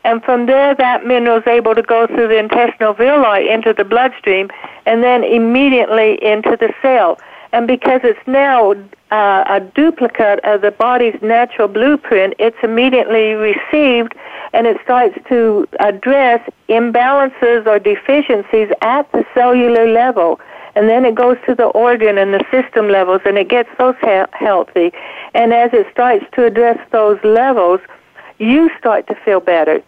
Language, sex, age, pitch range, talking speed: English, female, 60-79, 215-255 Hz, 155 wpm